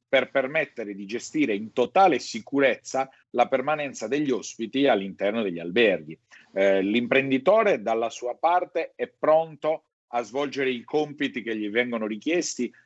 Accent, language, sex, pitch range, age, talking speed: native, Italian, male, 105-130 Hz, 40-59, 135 wpm